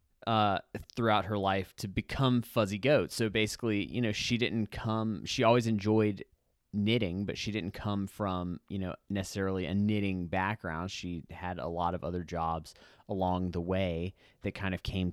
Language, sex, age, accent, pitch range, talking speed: English, male, 20-39, American, 90-110 Hz, 175 wpm